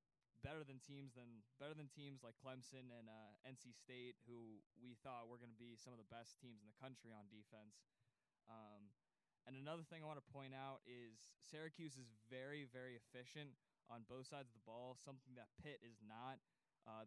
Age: 20-39